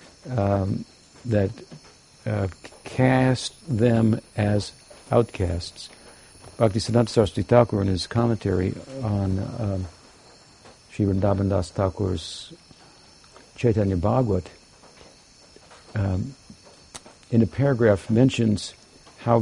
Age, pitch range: 60-79, 95-115 Hz